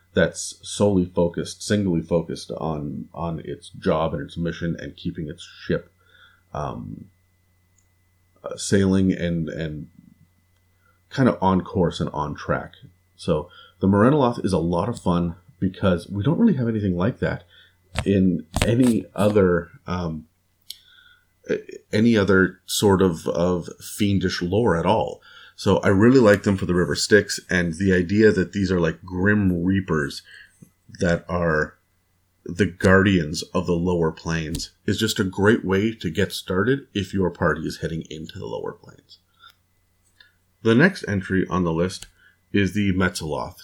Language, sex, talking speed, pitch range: English, male, 150 wpm, 90-105 Hz